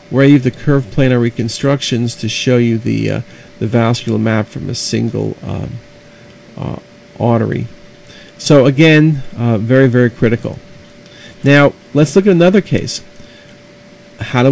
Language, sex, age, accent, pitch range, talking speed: English, male, 50-69, American, 115-145 Hz, 145 wpm